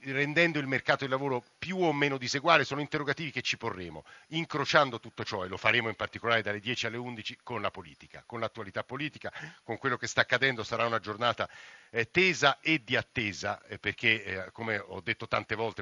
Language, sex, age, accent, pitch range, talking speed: Italian, male, 50-69, native, 110-125 Hz, 195 wpm